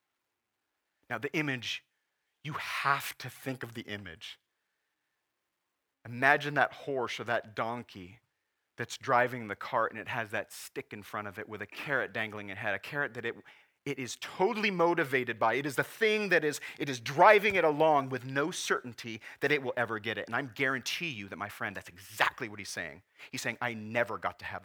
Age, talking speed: 40-59, 200 wpm